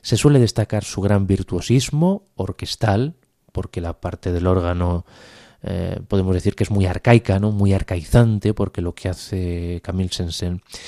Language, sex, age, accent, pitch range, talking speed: Spanish, male, 30-49, Spanish, 90-105 Hz, 155 wpm